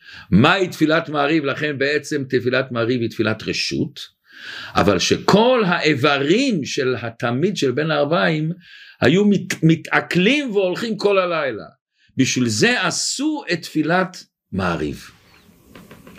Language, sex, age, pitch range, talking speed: Hebrew, male, 50-69, 140-200 Hz, 110 wpm